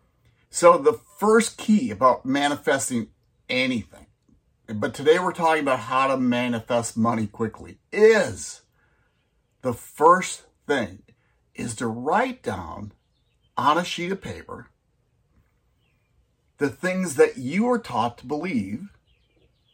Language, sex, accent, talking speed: English, male, American, 115 wpm